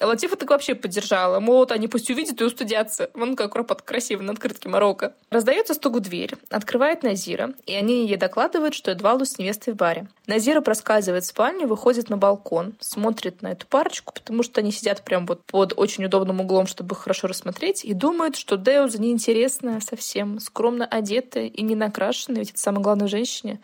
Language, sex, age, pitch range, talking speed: Russian, female, 20-39, 200-260 Hz, 185 wpm